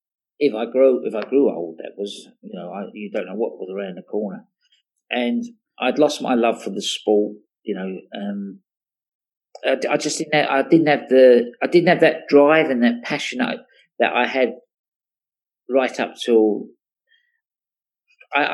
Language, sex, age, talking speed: English, male, 40-59, 180 wpm